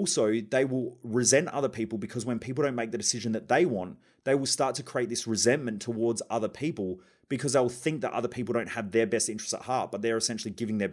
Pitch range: 115-140 Hz